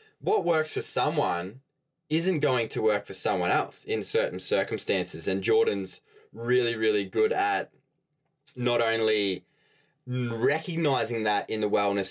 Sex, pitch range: male, 120-185 Hz